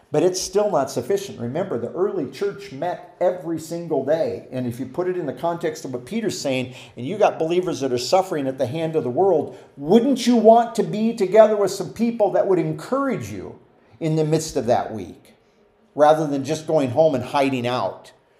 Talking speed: 210 wpm